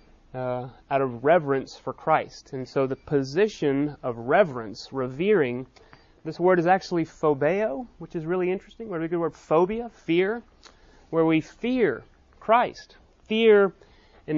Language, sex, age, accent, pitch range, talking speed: English, male, 30-49, American, 135-180 Hz, 140 wpm